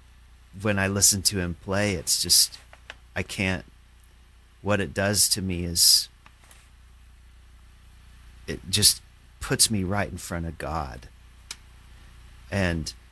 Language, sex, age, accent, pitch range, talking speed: English, male, 40-59, American, 85-100 Hz, 120 wpm